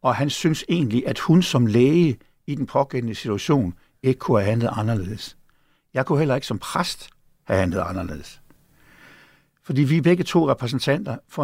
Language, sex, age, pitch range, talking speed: Danish, male, 60-79, 115-150 Hz, 170 wpm